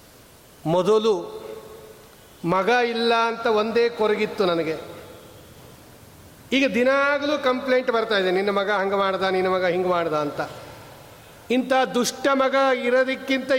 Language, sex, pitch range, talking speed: Kannada, male, 170-230 Hz, 110 wpm